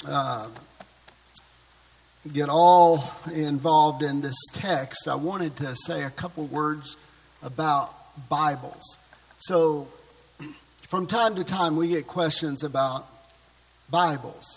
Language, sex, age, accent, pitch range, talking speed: English, male, 50-69, American, 145-175 Hz, 105 wpm